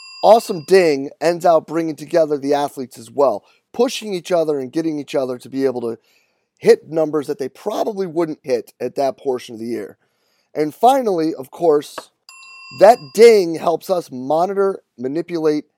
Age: 30-49